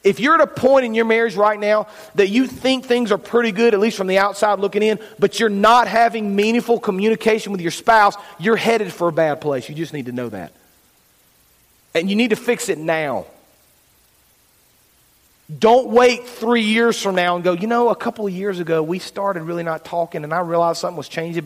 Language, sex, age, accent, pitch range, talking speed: English, male, 40-59, American, 165-220 Hz, 220 wpm